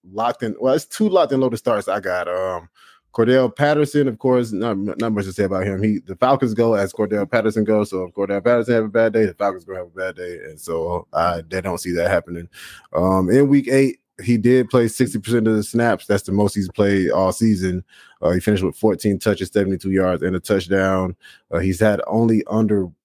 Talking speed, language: 235 wpm, English